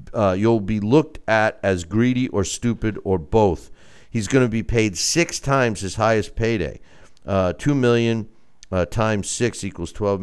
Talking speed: 170 wpm